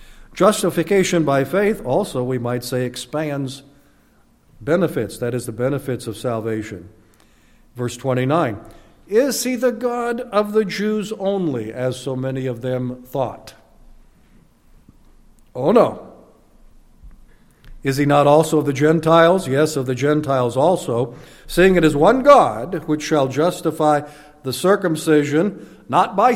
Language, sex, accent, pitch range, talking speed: English, male, American, 135-190 Hz, 130 wpm